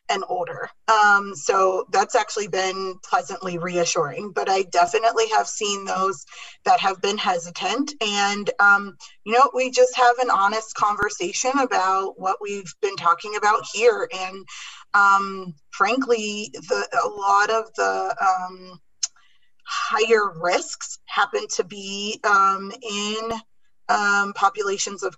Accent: American